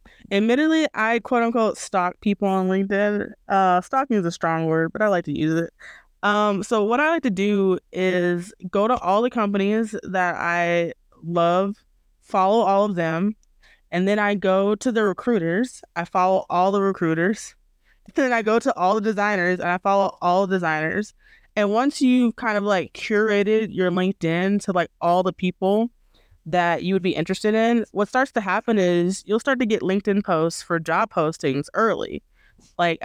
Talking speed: 180 wpm